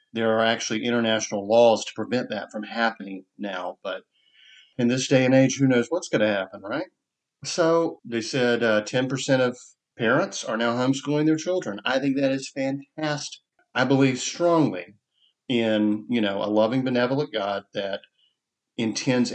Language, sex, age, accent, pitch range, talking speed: English, male, 40-59, American, 110-145 Hz, 165 wpm